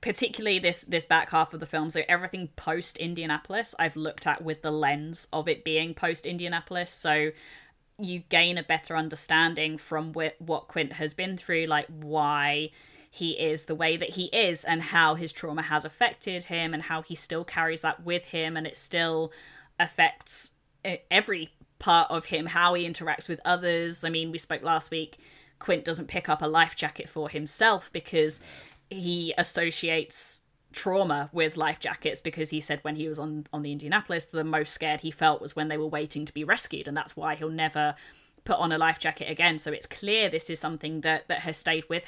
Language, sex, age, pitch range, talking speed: English, female, 20-39, 155-175 Hz, 195 wpm